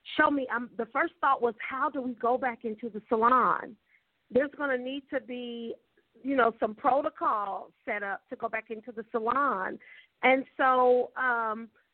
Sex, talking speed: female, 180 wpm